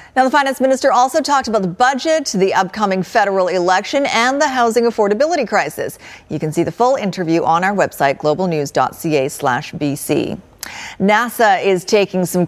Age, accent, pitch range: 40-59, American, 185-250 Hz